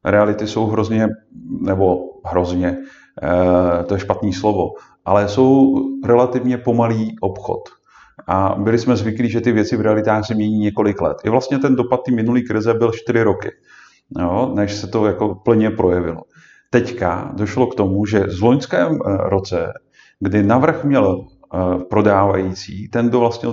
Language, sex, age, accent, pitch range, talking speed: Czech, male, 40-59, native, 100-125 Hz, 145 wpm